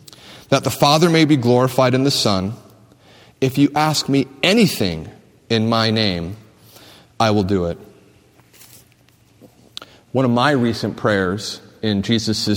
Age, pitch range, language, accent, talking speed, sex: 40-59, 105-145 Hz, English, American, 135 wpm, male